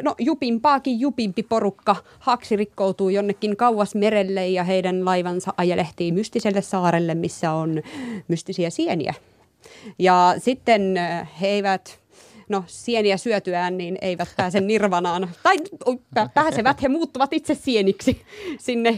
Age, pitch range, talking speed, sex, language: 30-49, 170-225 Hz, 115 wpm, female, Finnish